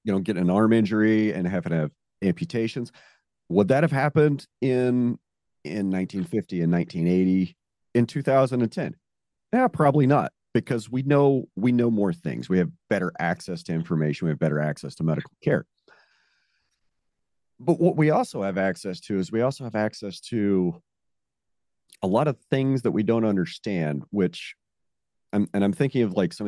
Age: 40-59